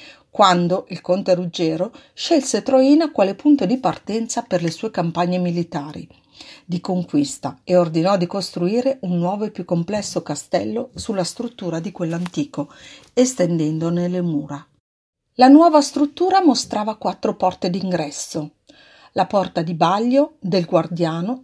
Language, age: Italian, 50-69